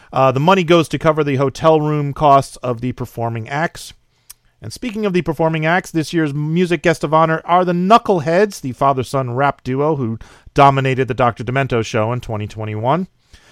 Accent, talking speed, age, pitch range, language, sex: American, 180 wpm, 40-59, 125-175 Hz, English, male